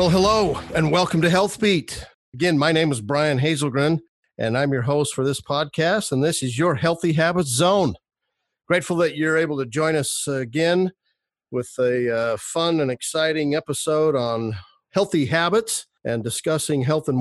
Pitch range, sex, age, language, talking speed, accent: 135-165 Hz, male, 50-69, English, 170 wpm, American